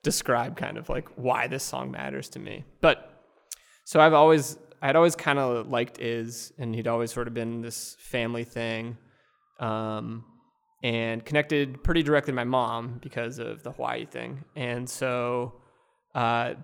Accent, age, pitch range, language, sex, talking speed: American, 20-39, 120-145 Hz, English, male, 160 wpm